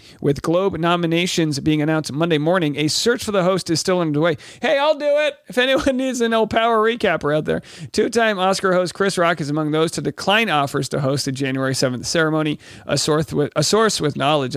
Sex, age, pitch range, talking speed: male, 40-59, 150-210 Hz, 200 wpm